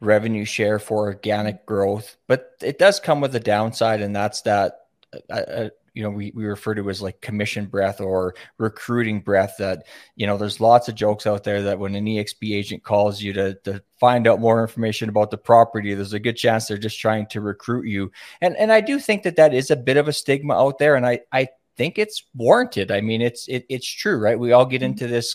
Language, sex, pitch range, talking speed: English, male, 105-125 Hz, 235 wpm